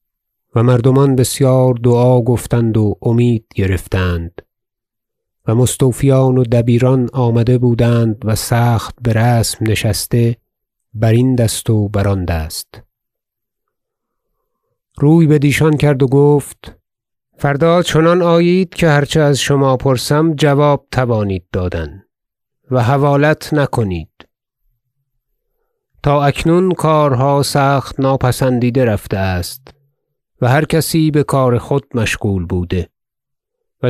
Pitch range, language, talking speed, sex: 110-145 Hz, Persian, 110 wpm, male